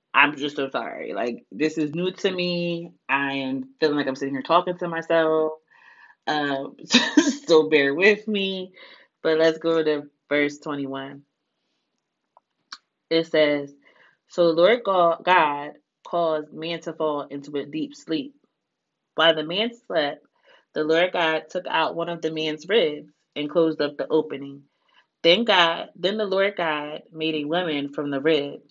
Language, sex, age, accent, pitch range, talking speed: English, female, 20-39, American, 155-235 Hz, 160 wpm